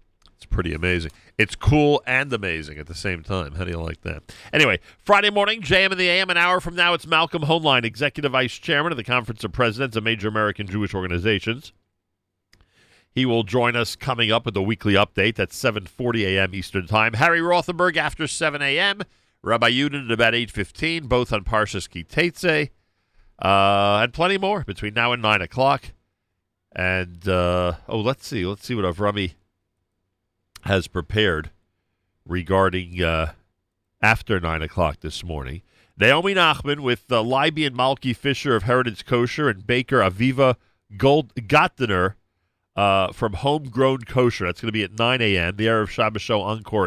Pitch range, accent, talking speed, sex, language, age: 90-125 Hz, American, 170 wpm, male, English, 50-69